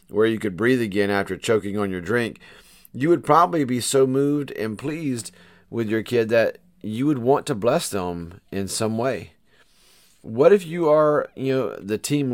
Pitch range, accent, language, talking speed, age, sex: 95-125 Hz, American, English, 190 wpm, 40-59, male